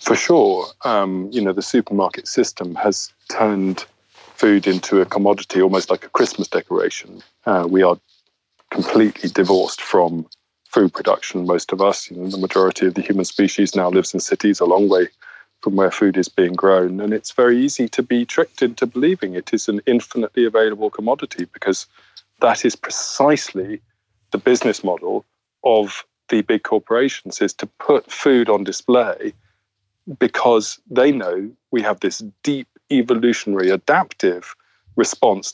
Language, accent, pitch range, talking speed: English, British, 95-125 Hz, 155 wpm